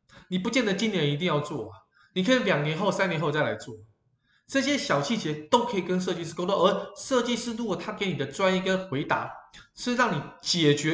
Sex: male